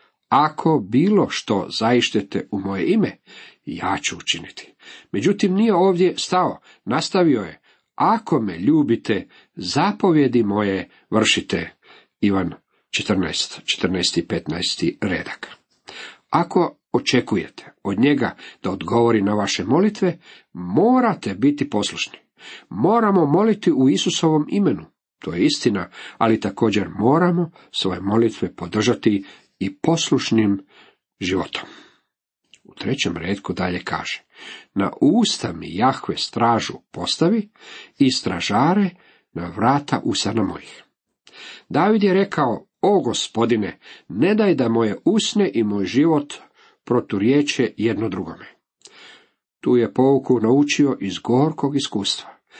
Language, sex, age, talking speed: Croatian, male, 50-69, 110 wpm